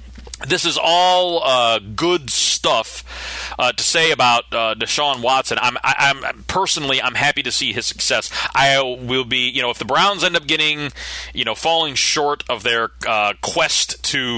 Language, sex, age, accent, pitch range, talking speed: English, male, 30-49, American, 110-155 Hz, 175 wpm